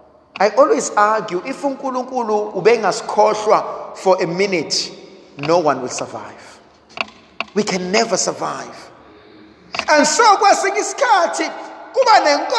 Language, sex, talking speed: English, male, 85 wpm